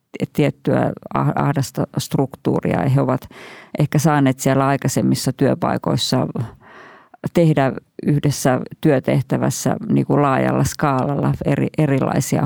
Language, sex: Finnish, female